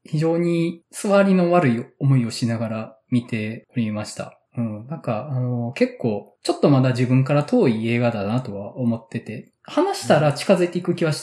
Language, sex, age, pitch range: Japanese, male, 20-39, 120-165 Hz